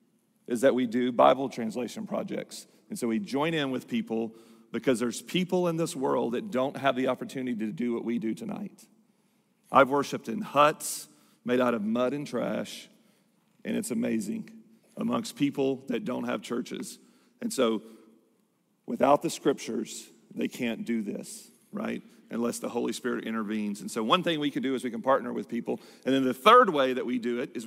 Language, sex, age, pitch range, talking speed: English, male, 40-59, 115-150 Hz, 190 wpm